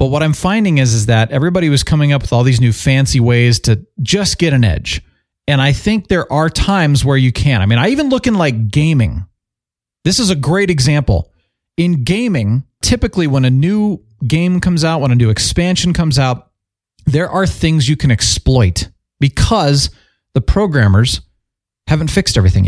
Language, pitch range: English, 110-155 Hz